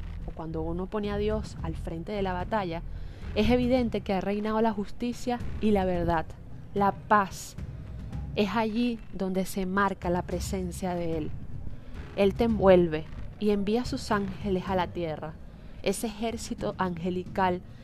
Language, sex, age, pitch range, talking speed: Spanish, female, 20-39, 180-230 Hz, 155 wpm